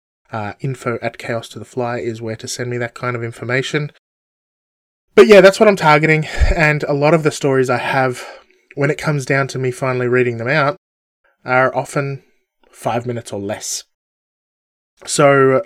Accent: Australian